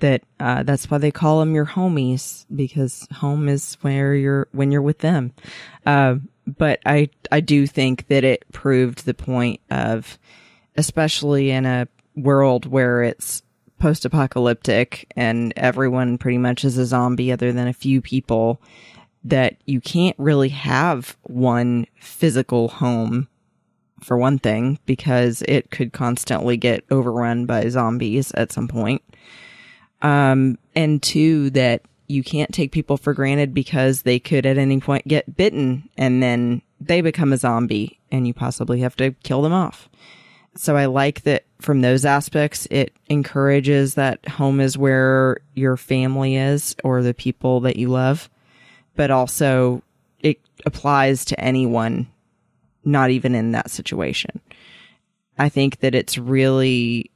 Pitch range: 125-145 Hz